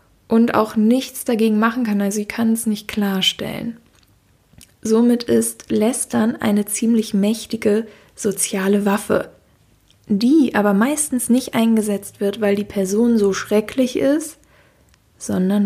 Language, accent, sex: German, German, female